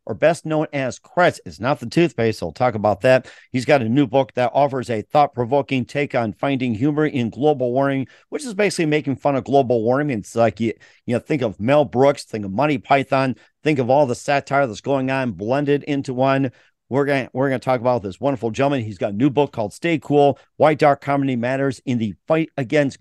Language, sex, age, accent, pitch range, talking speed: English, male, 50-69, American, 125-150 Hz, 220 wpm